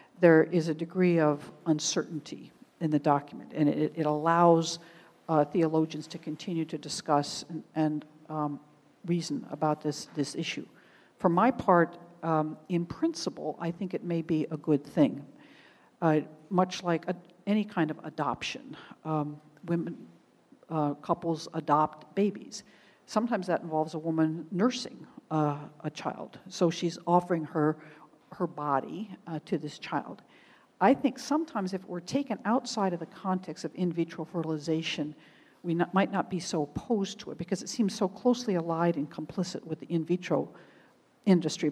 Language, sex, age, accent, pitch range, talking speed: English, female, 60-79, American, 155-185 Hz, 160 wpm